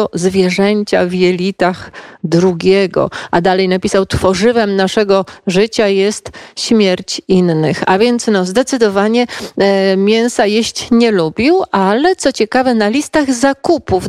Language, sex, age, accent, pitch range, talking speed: Polish, female, 40-59, native, 190-240 Hz, 110 wpm